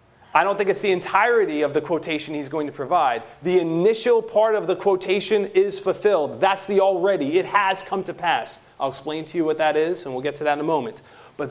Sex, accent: male, American